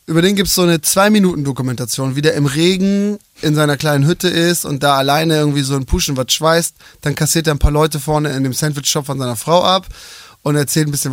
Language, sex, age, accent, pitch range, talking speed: German, male, 20-39, German, 140-185 Hz, 230 wpm